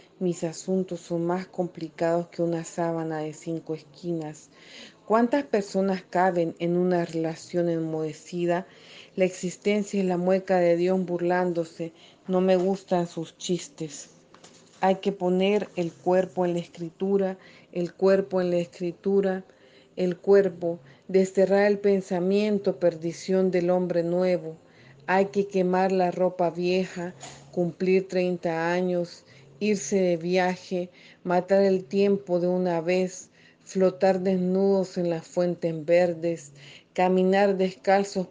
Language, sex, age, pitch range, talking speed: English, female, 40-59, 170-190 Hz, 125 wpm